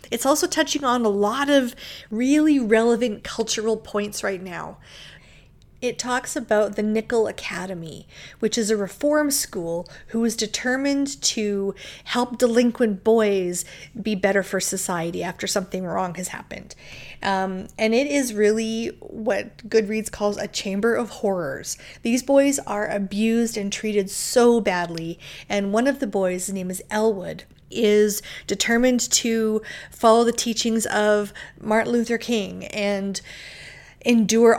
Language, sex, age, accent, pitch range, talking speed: English, female, 30-49, American, 195-230 Hz, 140 wpm